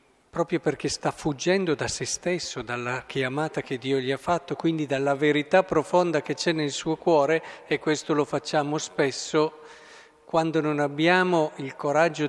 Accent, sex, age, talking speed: native, male, 50-69, 160 wpm